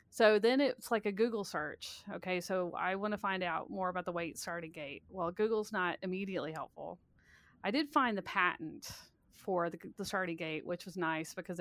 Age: 30-49